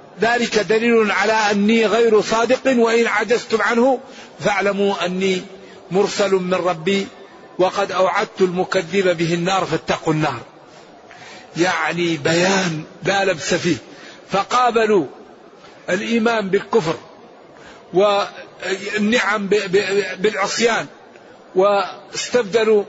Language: Arabic